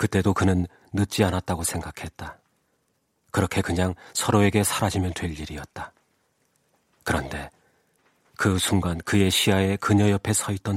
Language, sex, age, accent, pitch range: Korean, male, 40-59, native, 85-100 Hz